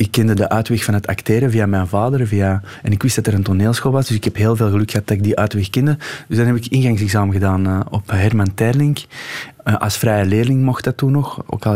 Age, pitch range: 20-39, 105-125 Hz